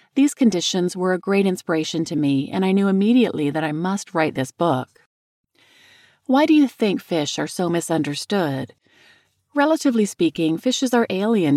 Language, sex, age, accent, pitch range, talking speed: English, female, 40-59, American, 160-225 Hz, 160 wpm